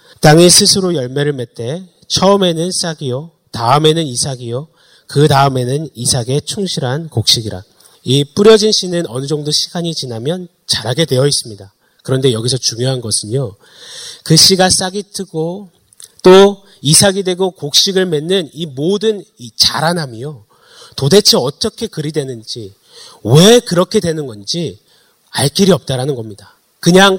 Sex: male